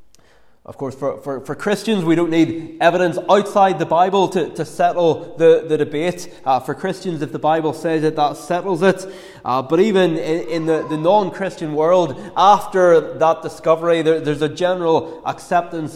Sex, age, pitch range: male, 20-39, 155-190 Hz